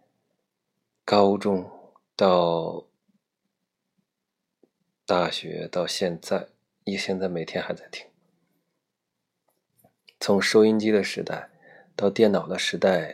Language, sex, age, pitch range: Chinese, male, 20-39, 95-120 Hz